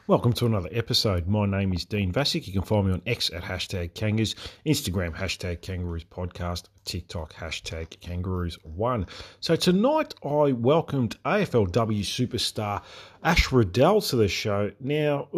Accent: Australian